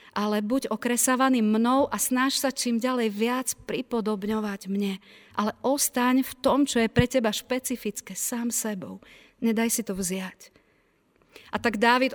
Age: 30-49